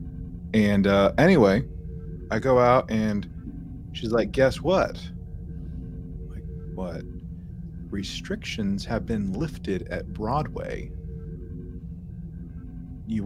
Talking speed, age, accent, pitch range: 85 wpm, 30-49, American, 85-110 Hz